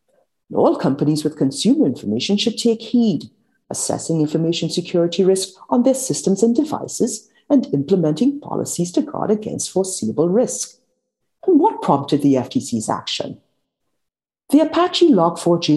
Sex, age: female, 50-69